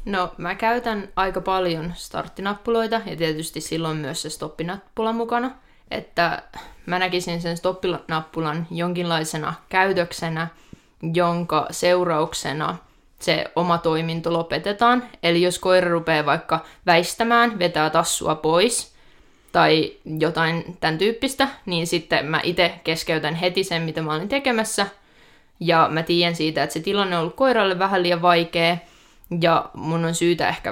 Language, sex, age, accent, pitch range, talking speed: Finnish, female, 20-39, native, 160-190 Hz, 135 wpm